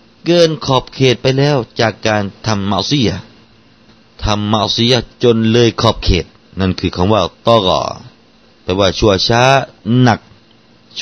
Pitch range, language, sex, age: 85-115 Hz, Thai, male, 30-49